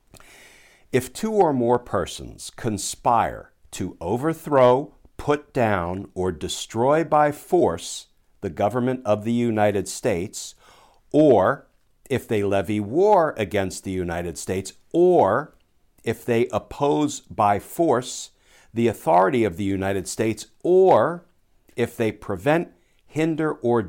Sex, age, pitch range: male, 60-79, 95-135 Hz